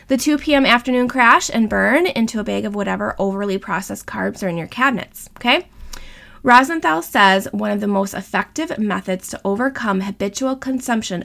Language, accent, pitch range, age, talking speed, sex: English, American, 205-275 Hz, 20-39, 170 wpm, female